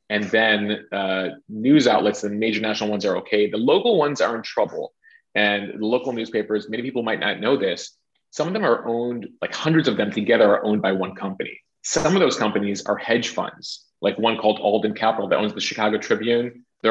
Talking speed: 215 wpm